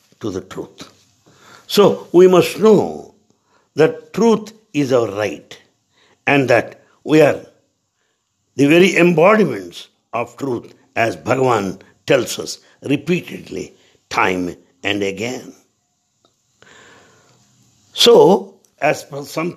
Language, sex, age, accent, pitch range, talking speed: English, male, 60-79, Indian, 120-185 Hz, 100 wpm